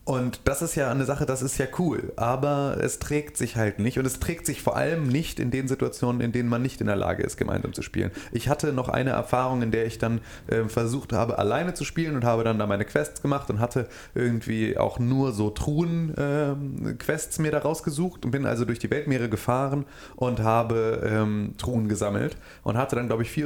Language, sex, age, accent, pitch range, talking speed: German, male, 30-49, German, 110-135 Hz, 225 wpm